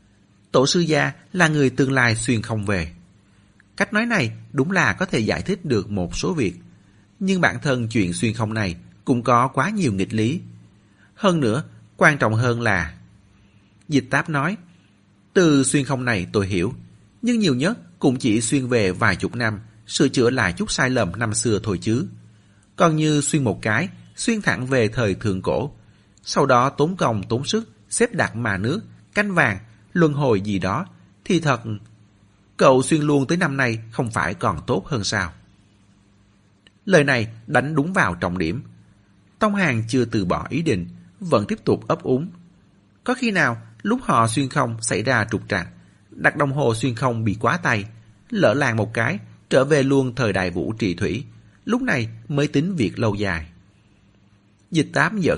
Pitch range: 100-140 Hz